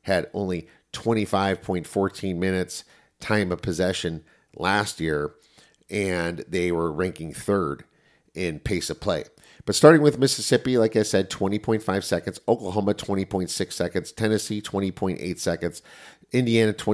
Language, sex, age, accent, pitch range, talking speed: English, male, 50-69, American, 90-105 Hz, 120 wpm